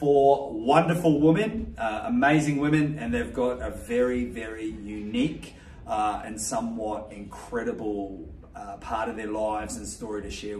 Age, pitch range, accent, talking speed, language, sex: 30-49, 110-150 Hz, Australian, 145 wpm, English, male